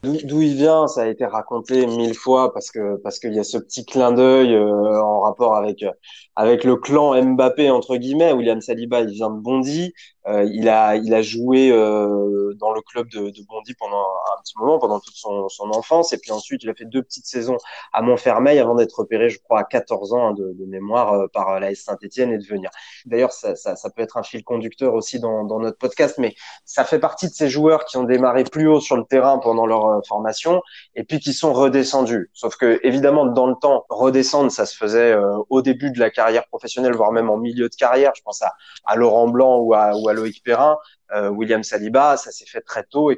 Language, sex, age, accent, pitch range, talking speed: French, male, 20-39, French, 110-140 Hz, 235 wpm